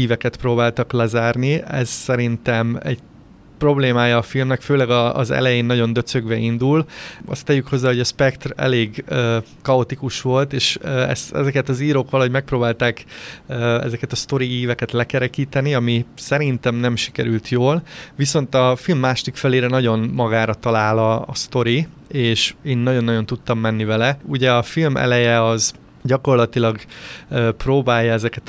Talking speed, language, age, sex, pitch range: 150 wpm, Hungarian, 30-49, male, 115-135 Hz